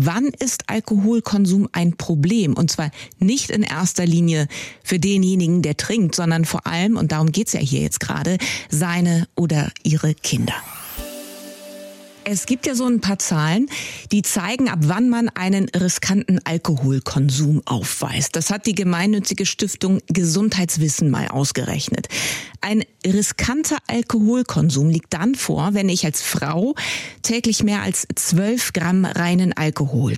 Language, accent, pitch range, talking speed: German, German, 160-210 Hz, 140 wpm